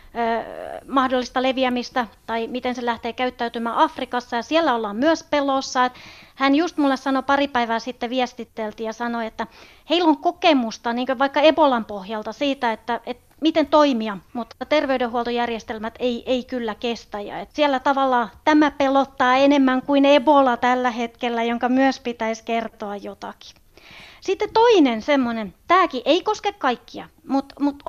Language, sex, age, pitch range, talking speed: Finnish, female, 30-49, 245-345 Hz, 140 wpm